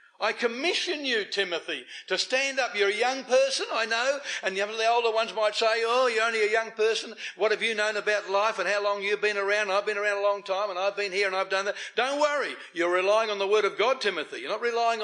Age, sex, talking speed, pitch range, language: 60-79, male, 255 wpm, 195-265 Hz, English